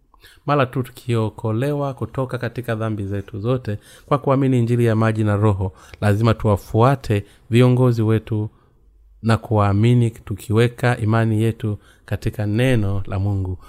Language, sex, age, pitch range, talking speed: Swahili, male, 30-49, 100-125 Hz, 125 wpm